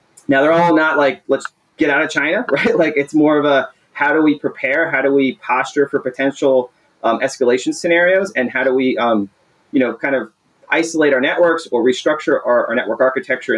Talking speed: 210 wpm